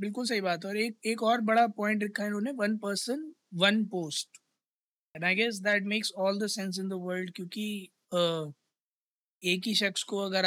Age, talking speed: 20-39, 130 wpm